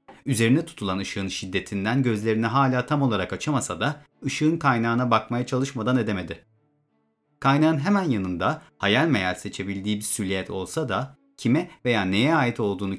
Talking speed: 140 wpm